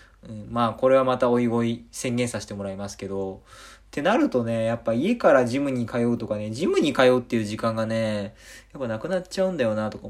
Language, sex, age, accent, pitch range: Japanese, male, 20-39, native, 105-130 Hz